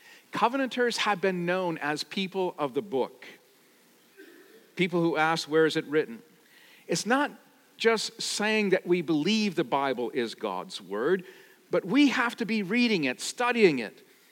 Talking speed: 155 wpm